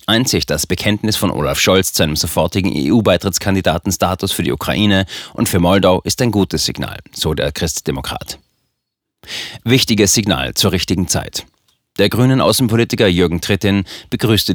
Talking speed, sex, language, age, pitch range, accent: 145 wpm, male, German, 40-59, 90-110 Hz, German